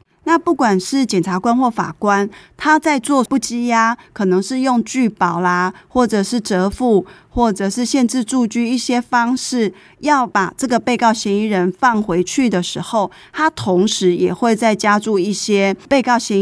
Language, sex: Chinese, female